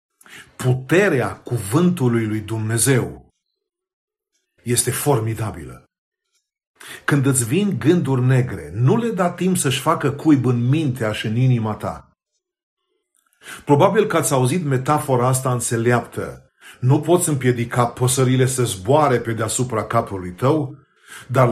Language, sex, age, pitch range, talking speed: Romanian, male, 50-69, 125-155 Hz, 115 wpm